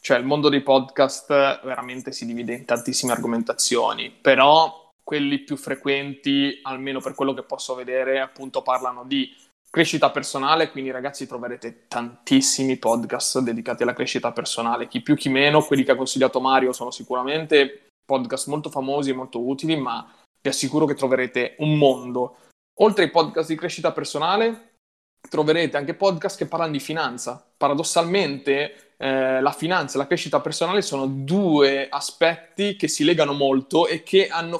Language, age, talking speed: Italian, 20-39, 155 wpm